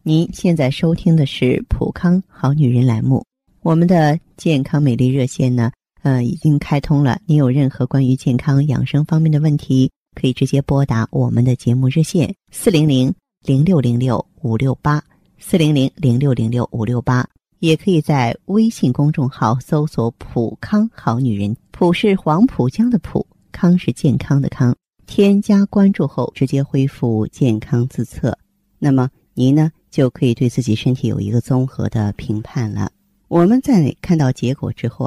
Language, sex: Chinese, female